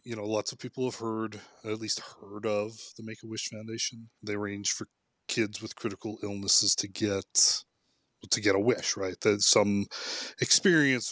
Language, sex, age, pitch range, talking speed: English, male, 20-39, 100-115 Hz, 165 wpm